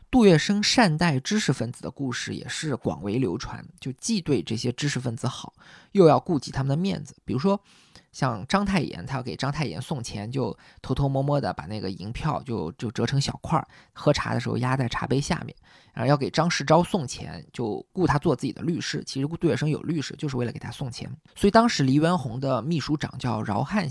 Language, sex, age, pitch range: Chinese, male, 20-39, 125-165 Hz